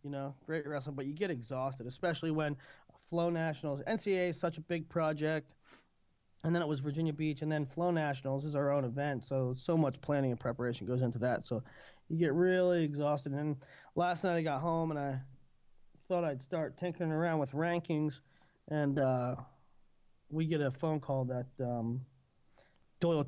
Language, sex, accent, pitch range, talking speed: English, male, American, 135-160 Hz, 185 wpm